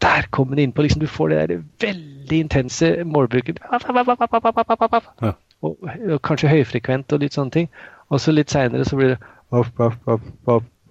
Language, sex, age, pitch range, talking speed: English, male, 30-49, 110-150 Hz, 165 wpm